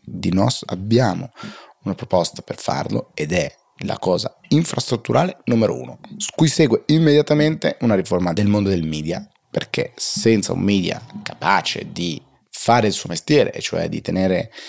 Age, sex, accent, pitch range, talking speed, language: 30-49, male, native, 95-145 Hz, 150 wpm, Italian